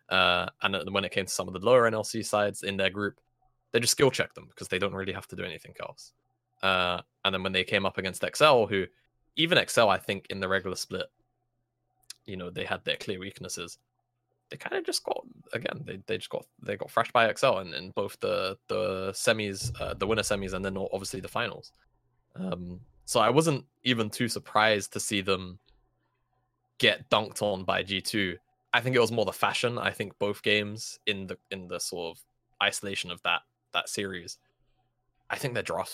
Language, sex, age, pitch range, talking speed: English, male, 20-39, 95-125 Hz, 210 wpm